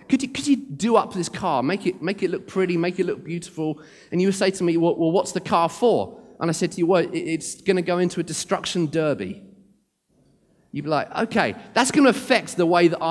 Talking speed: 250 wpm